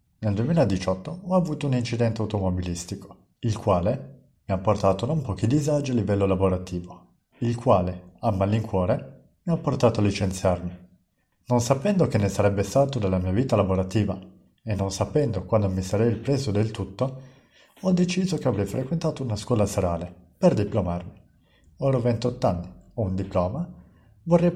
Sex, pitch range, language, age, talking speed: male, 95-130 Hz, Italian, 50-69, 155 wpm